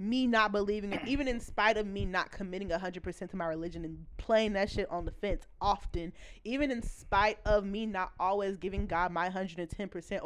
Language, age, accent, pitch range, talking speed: English, 20-39, American, 175-220 Hz, 230 wpm